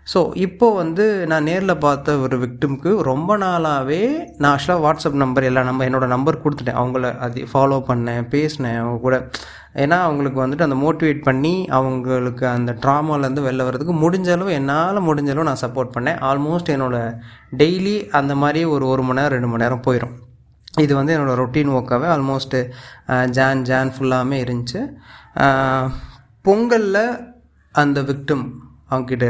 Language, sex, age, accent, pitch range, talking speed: Tamil, male, 20-39, native, 125-155 Hz, 135 wpm